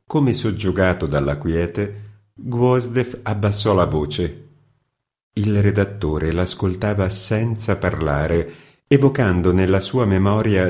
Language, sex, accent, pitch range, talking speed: Italian, male, native, 90-120 Hz, 95 wpm